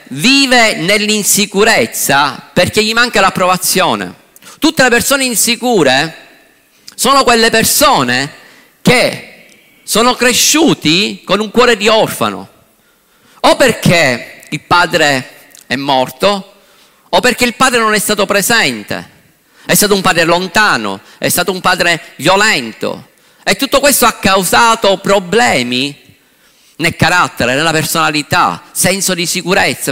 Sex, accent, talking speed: male, native, 115 wpm